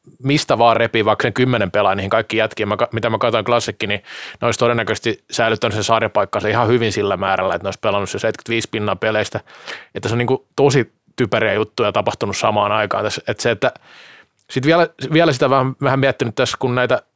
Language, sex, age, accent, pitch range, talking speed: Finnish, male, 20-39, native, 110-140 Hz, 190 wpm